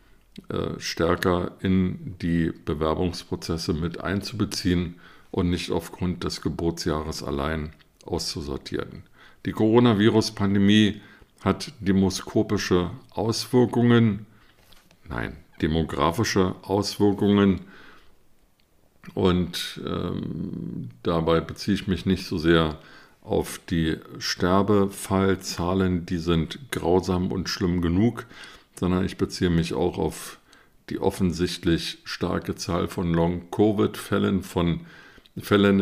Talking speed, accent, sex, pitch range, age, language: 90 wpm, German, male, 85-100 Hz, 50-69, German